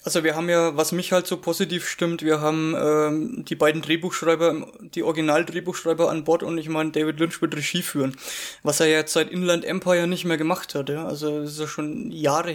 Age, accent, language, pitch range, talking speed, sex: 20-39, German, English, 155-180 Hz, 220 wpm, male